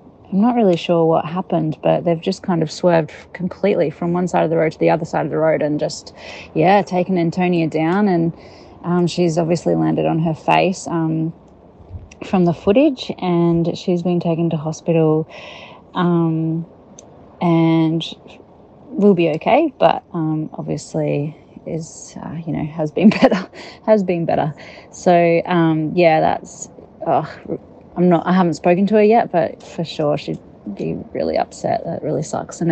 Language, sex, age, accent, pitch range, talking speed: English, female, 30-49, Australian, 165-185 Hz, 165 wpm